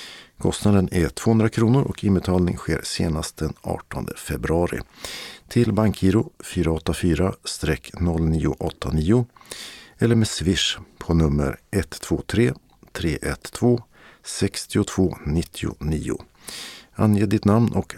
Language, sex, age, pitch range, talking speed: Swedish, male, 50-69, 80-110 Hz, 80 wpm